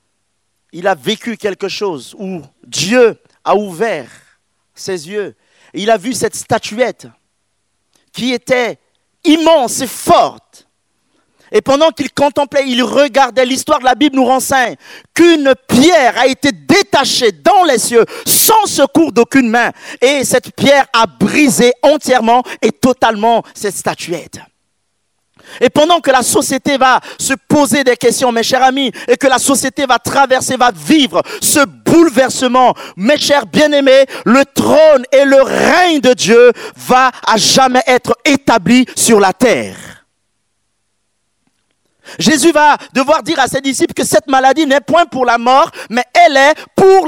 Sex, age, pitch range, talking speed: male, 50-69, 210-285 Hz, 145 wpm